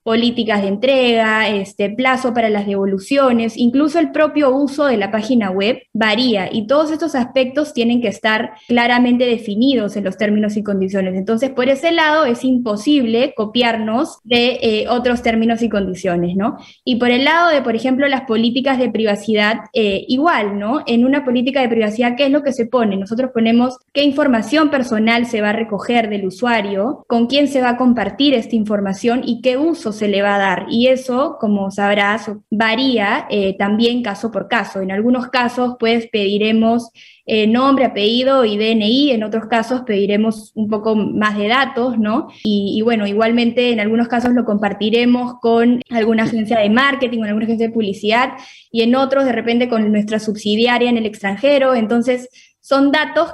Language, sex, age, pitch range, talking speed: Spanish, female, 10-29, 215-255 Hz, 180 wpm